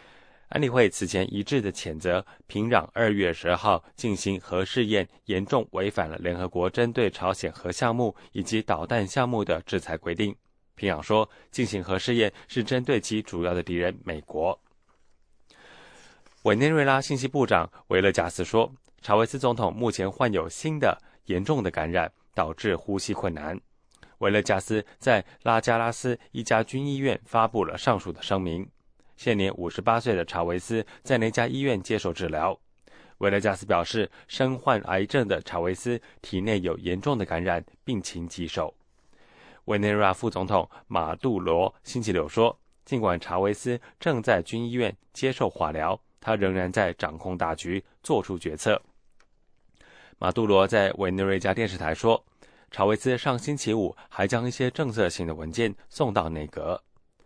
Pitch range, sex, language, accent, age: 90-120 Hz, male, English, Chinese, 20-39